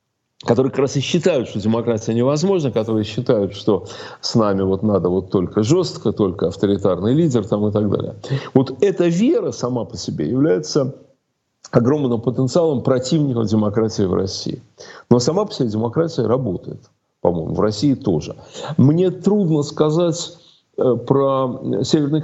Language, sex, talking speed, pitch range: Russian, male, 145 wpm, 120-165 Hz